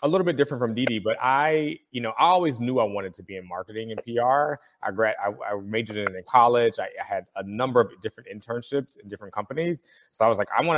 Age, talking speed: 20-39, 240 wpm